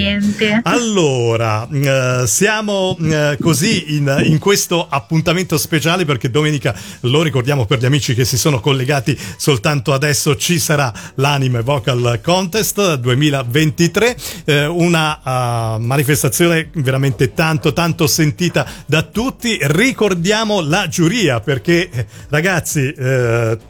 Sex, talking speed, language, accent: male, 115 wpm, Italian, native